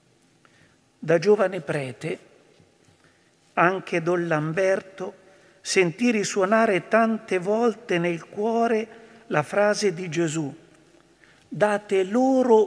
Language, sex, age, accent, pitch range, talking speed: Italian, male, 50-69, native, 170-225 Hz, 85 wpm